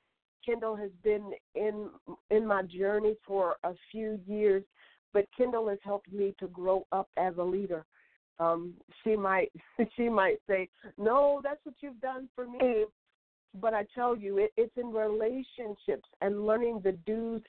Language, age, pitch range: English, 50-69, 190-215 Hz